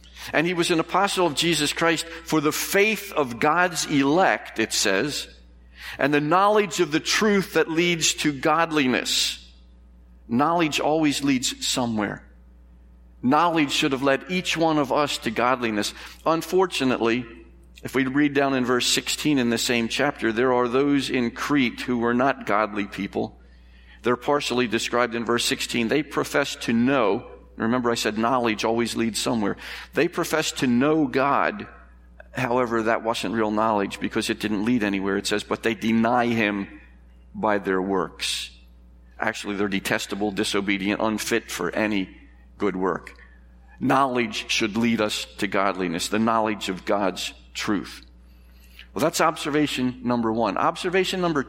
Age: 50-69